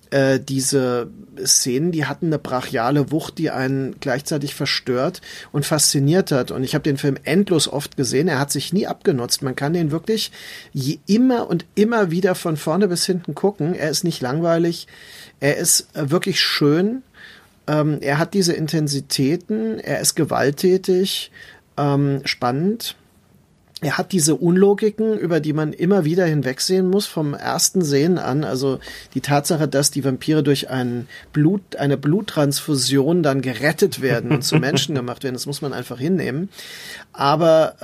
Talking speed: 155 wpm